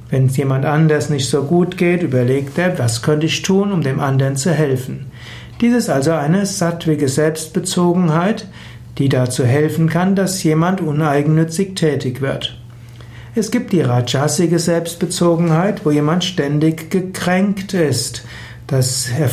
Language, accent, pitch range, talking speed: German, German, 135-170 Hz, 140 wpm